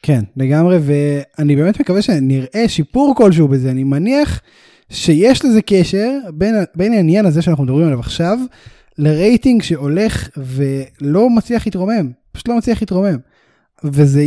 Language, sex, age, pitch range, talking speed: Hebrew, male, 10-29, 150-215 Hz, 135 wpm